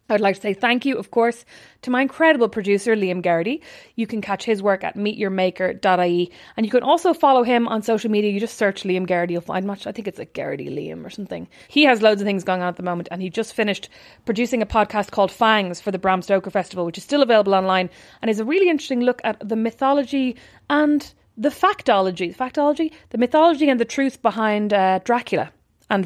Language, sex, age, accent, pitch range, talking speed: English, female, 30-49, Irish, 190-235 Hz, 225 wpm